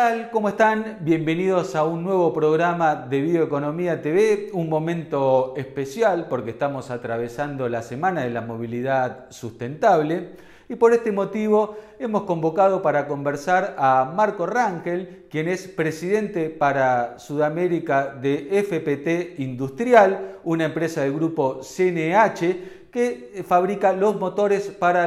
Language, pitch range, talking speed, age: Spanish, 140-190 Hz, 120 wpm, 40-59